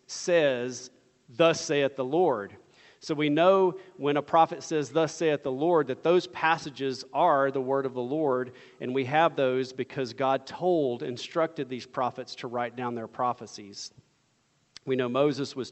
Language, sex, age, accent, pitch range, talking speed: English, male, 40-59, American, 115-145 Hz, 170 wpm